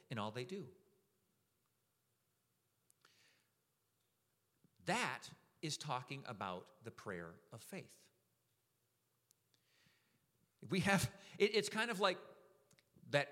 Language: English